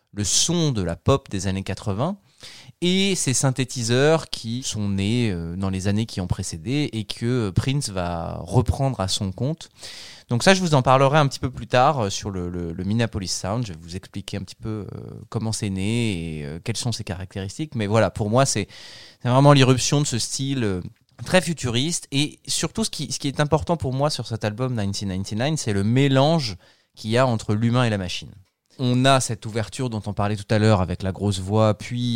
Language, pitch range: French, 105-150 Hz